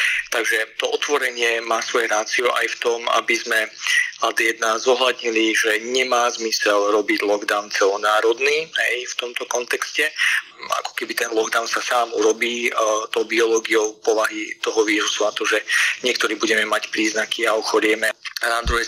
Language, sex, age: Slovak, male, 40-59